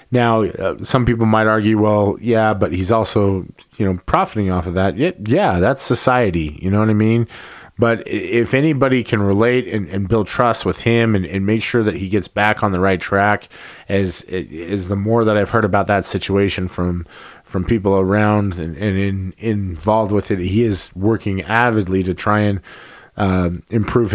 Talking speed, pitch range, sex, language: 195 wpm, 95-115 Hz, male, English